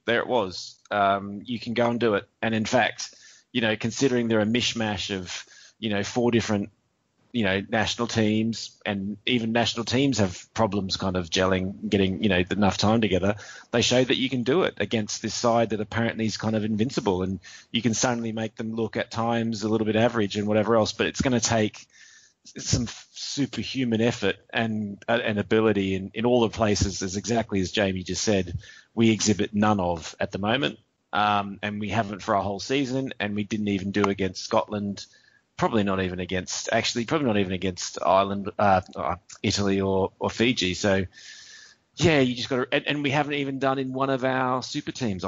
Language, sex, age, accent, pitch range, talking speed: English, male, 30-49, Australian, 100-115 Hz, 205 wpm